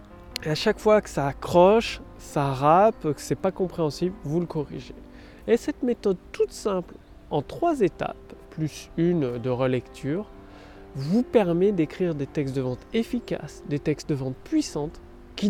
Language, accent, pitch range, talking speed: French, French, 135-200 Hz, 165 wpm